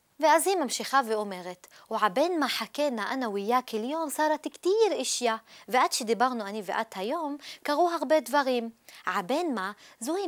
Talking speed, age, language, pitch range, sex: 140 wpm, 20-39, Hebrew, 215-290 Hz, female